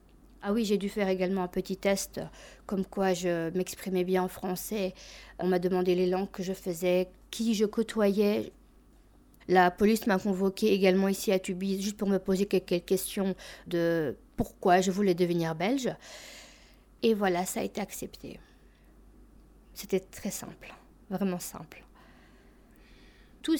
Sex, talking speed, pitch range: female, 150 wpm, 180-215 Hz